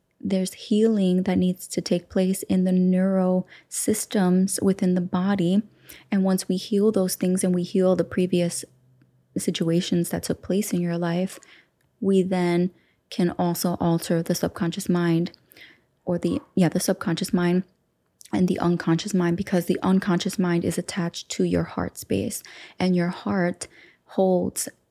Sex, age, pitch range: female, 20-39, 175-190 Hz